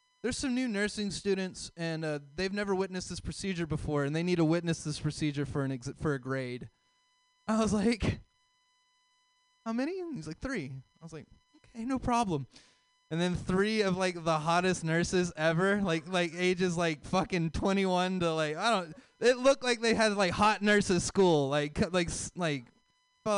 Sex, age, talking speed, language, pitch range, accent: male, 20-39, 185 wpm, English, 170-275 Hz, American